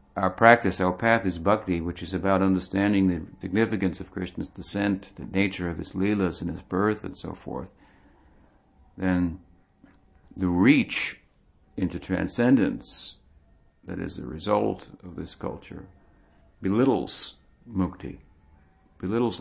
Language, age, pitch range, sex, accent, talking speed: English, 60-79, 85-95 Hz, male, American, 125 wpm